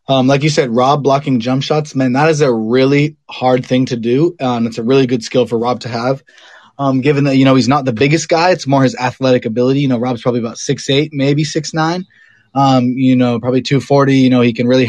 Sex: male